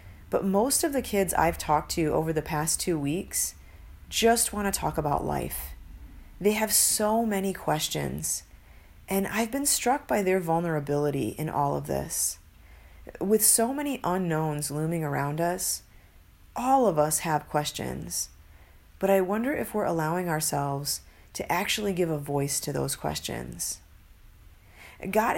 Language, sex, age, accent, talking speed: English, female, 40-59, American, 150 wpm